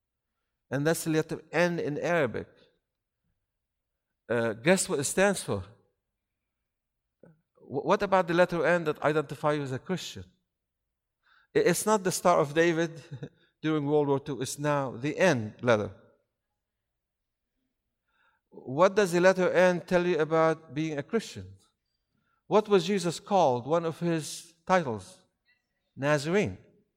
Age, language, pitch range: 60-79, English, 145-185 Hz